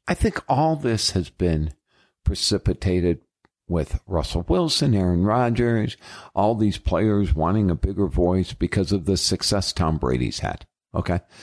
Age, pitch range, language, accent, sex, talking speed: 50-69, 90-120 Hz, English, American, male, 140 wpm